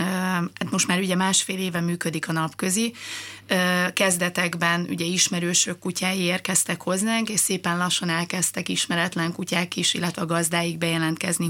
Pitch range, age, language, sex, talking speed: 175-190 Hz, 30-49, Hungarian, female, 130 wpm